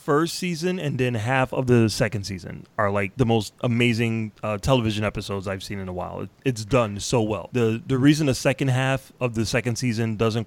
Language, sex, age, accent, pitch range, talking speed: English, male, 30-49, American, 115-140 Hz, 210 wpm